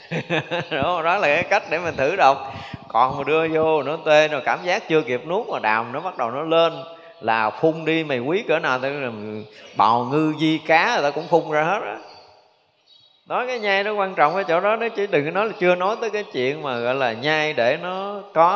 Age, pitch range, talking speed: 20-39, 120-175 Hz, 235 wpm